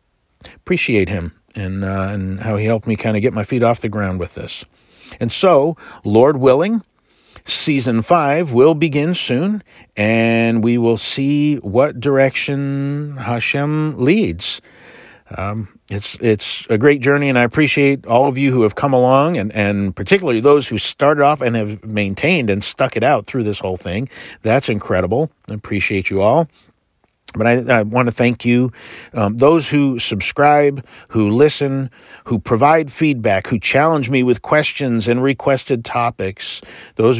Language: English